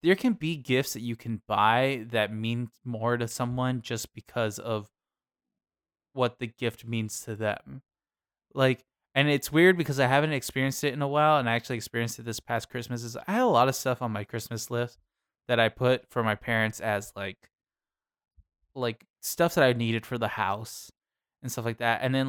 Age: 20-39